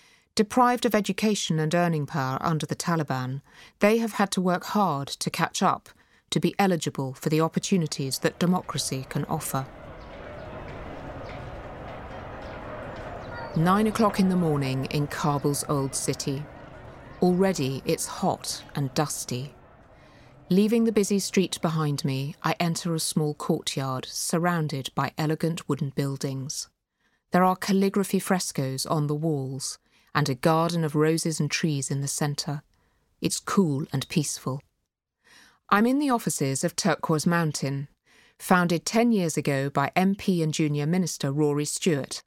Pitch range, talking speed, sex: 140-180 Hz, 140 wpm, female